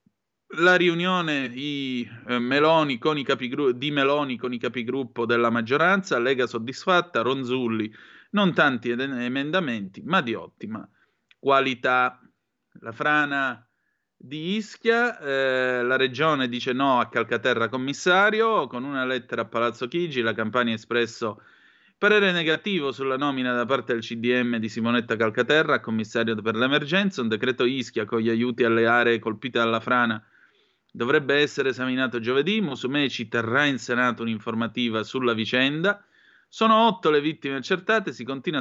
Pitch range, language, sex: 115-150 Hz, Italian, male